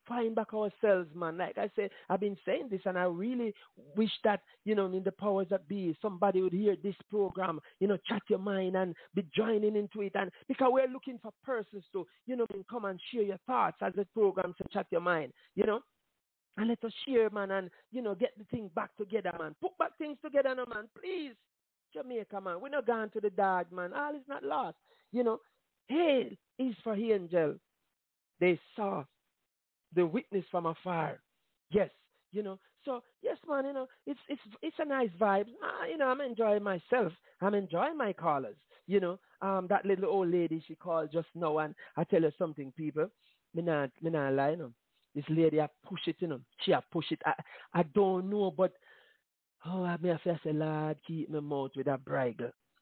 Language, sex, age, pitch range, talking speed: English, male, 50-69, 175-235 Hz, 210 wpm